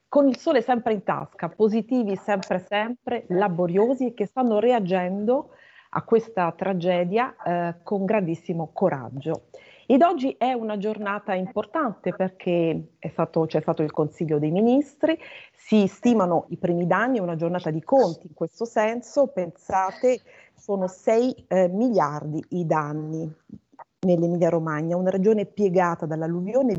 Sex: female